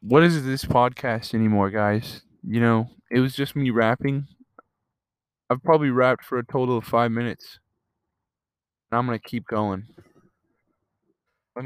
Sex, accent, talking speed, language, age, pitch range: male, American, 150 wpm, English, 20-39, 115-135 Hz